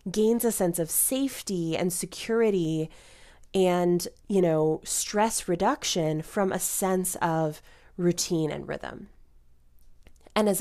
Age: 20-39